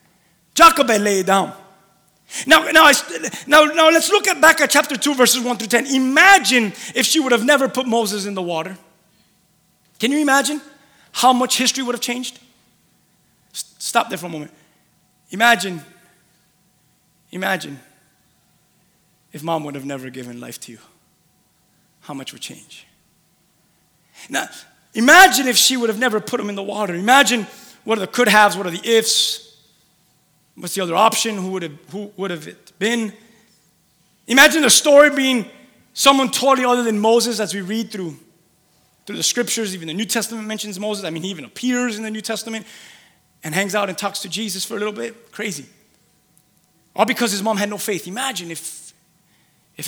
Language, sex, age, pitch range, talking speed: English, male, 30-49, 180-245 Hz, 175 wpm